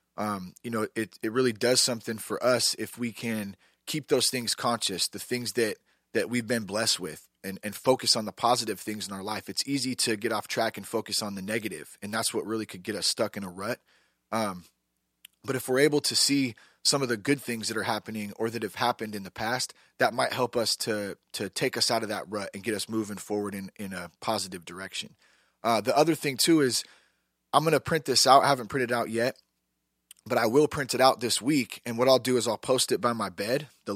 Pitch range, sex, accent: 105-130 Hz, male, American